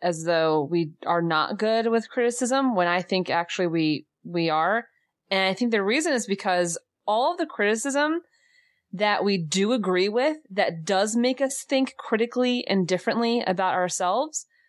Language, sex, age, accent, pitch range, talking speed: English, female, 20-39, American, 180-250 Hz, 170 wpm